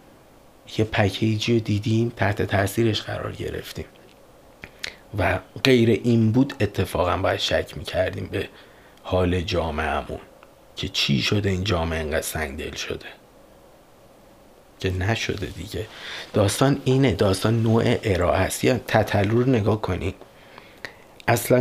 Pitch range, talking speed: 100-125 Hz, 110 wpm